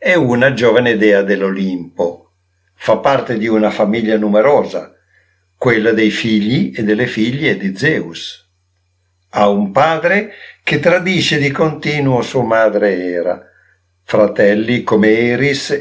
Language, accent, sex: Italian, native, male